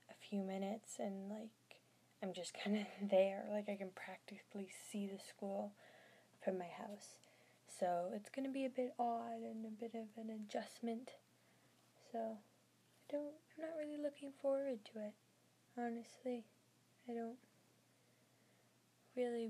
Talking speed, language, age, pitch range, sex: 145 wpm, English, 10-29, 200-240 Hz, female